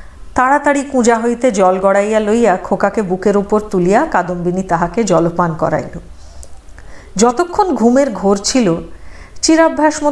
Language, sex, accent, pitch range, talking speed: Hindi, female, native, 190-300 Hz, 120 wpm